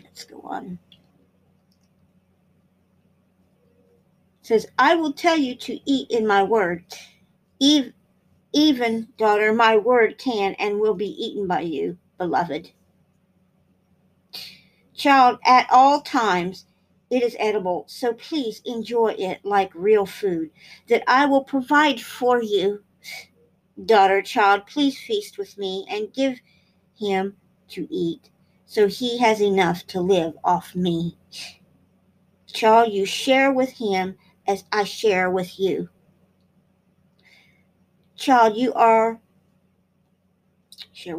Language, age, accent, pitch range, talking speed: English, 50-69, American, 190-255 Hz, 115 wpm